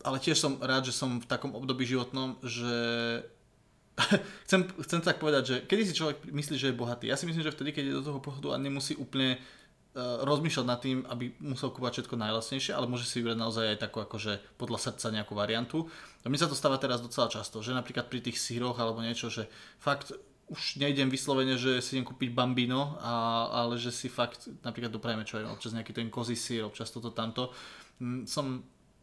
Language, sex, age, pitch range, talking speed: Slovak, male, 20-39, 115-130 Hz, 210 wpm